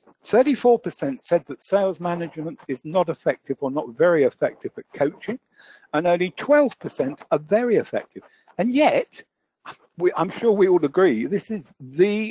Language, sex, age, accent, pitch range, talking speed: English, male, 60-79, British, 145-210 Hz, 140 wpm